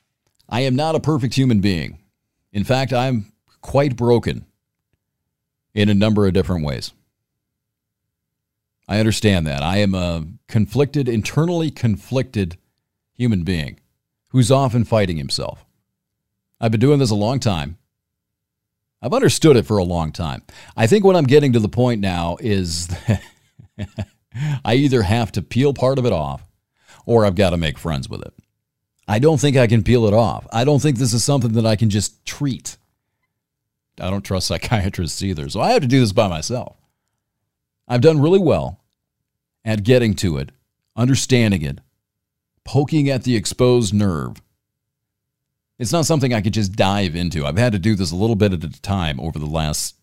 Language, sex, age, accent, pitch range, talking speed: English, male, 40-59, American, 95-125 Hz, 175 wpm